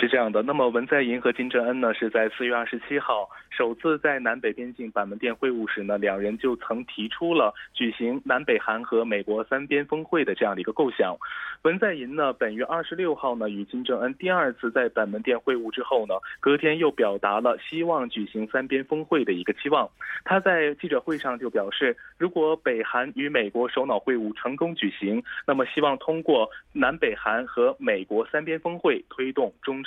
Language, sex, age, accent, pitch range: Korean, male, 20-39, Chinese, 120-170 Hz